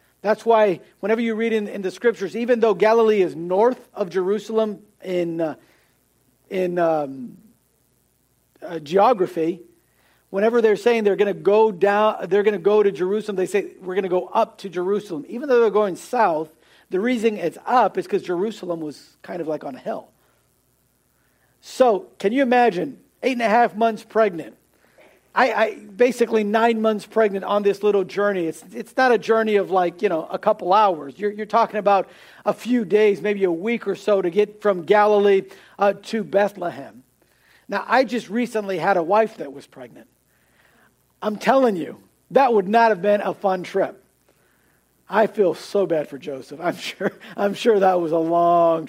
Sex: male